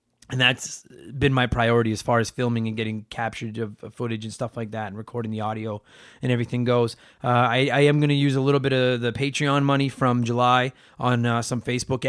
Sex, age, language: male, 30-49, English